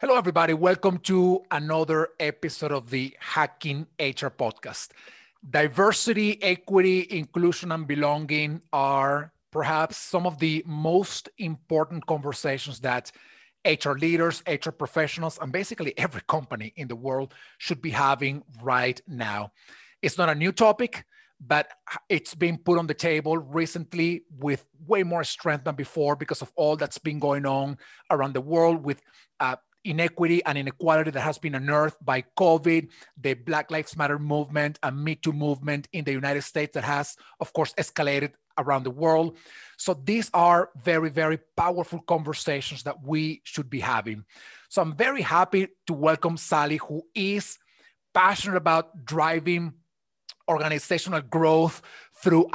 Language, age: English, 30-49